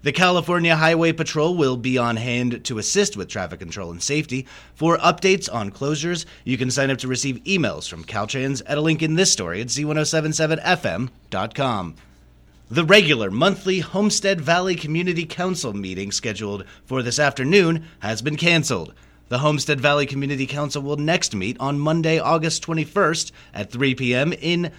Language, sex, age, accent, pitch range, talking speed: English, male, 30-49, American, 115-165 Hz, 160 wpm